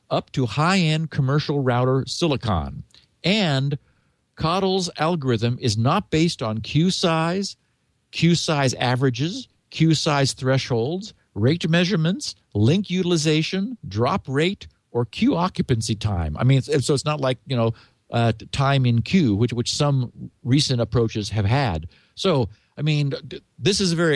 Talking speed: 150 wpm